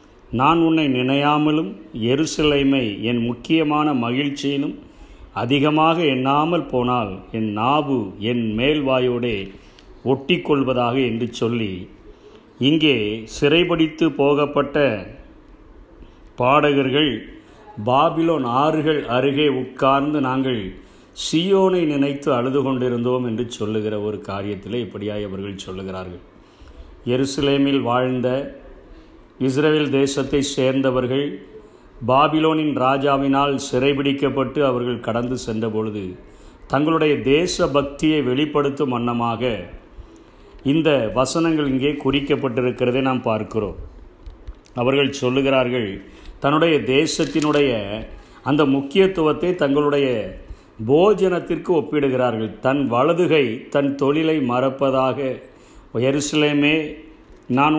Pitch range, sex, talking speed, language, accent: 120-150 Hz, male, 80 wpm, Tamil, native